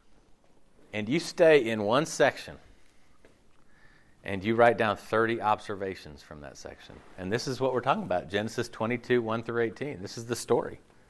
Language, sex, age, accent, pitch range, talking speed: English, male, 40-59, American, 105-135 Hz, 170 wpm